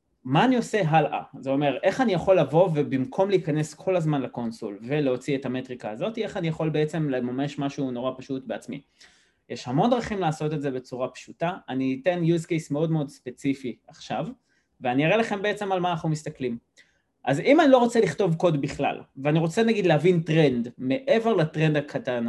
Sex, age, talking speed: male, 20-39, 185 wpm